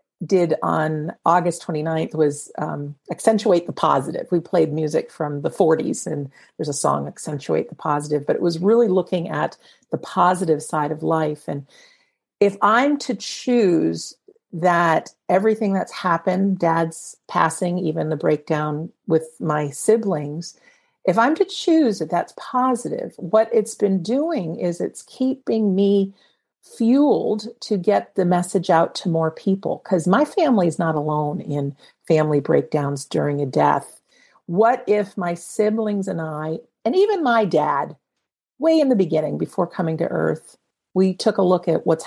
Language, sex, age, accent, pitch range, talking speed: English, female, 50-69, American, 160-220 Hz, 155 wpm